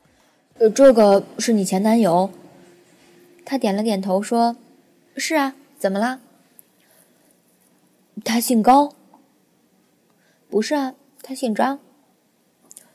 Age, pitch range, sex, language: 20-39, 195-255 Hz, female, Chinese